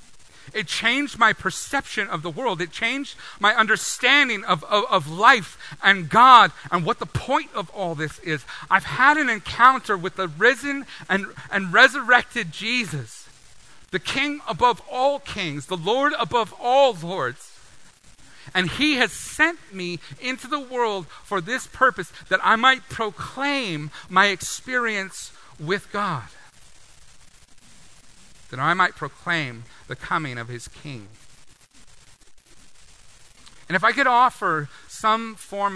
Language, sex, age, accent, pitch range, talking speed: English, male, 40-59, American, 150-225 Hz, 135 wpm